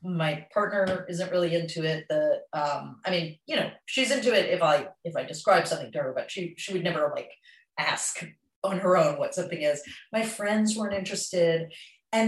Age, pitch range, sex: 40-59, 160-205 Hz, female